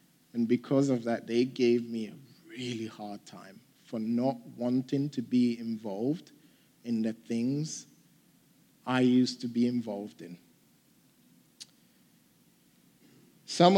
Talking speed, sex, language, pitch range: 120 wpm, male, English, 120-140 Hz